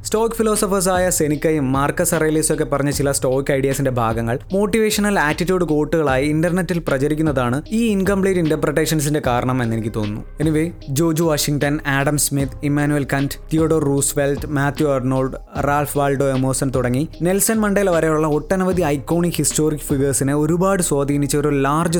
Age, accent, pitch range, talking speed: 20-39, native, 140-180 Hz, 130 wpm